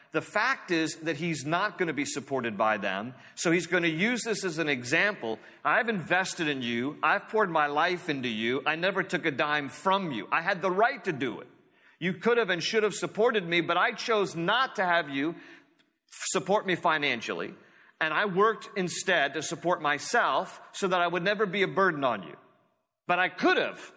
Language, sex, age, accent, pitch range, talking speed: English, male, 40-59, American, 145-195 Hz, 210 wpm